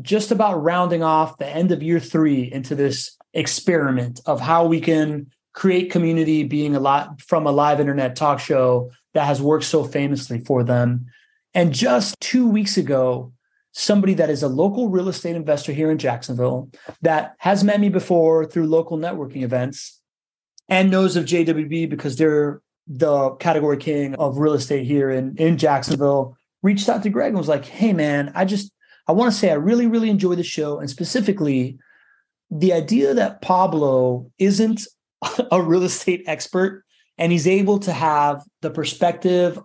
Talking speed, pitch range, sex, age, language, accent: 175 wpm, 145-185 Hz, male, 30-49, English, American